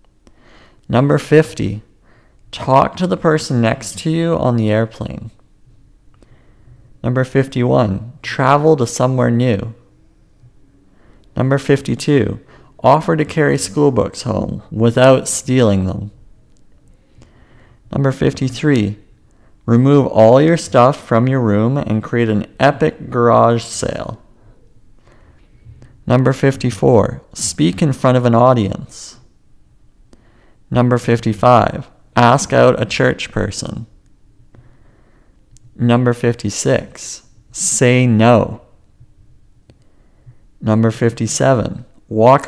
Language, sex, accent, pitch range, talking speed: English, male, American, 105-130 Hz, 95 wpm